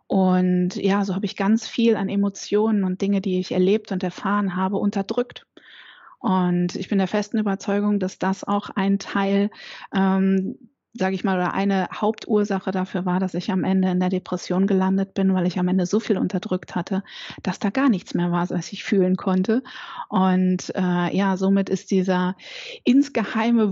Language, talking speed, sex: German, 180 wpm, female